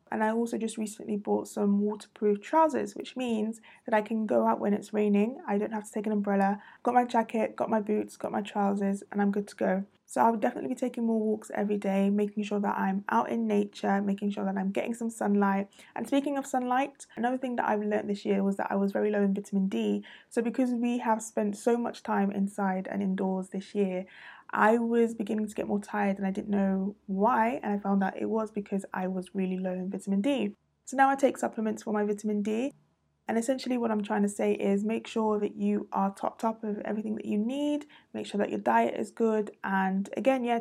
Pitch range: 195-225 Hz